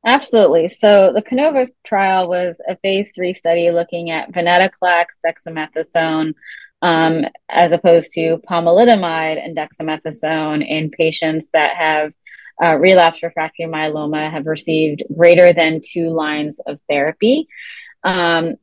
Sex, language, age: female, English, 20-39